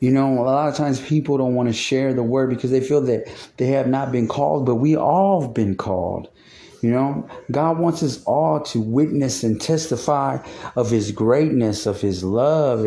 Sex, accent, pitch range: male, American, 120-155 Hz